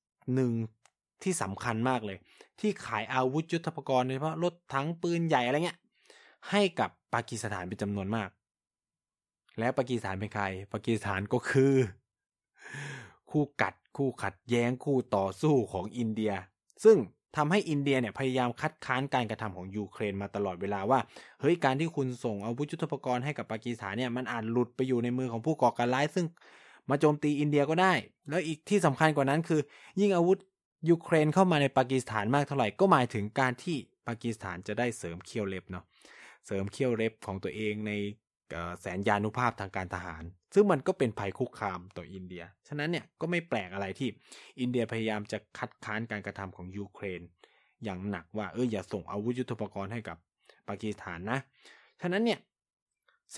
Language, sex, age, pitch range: Thai, male, 20-39, 105-145 Hz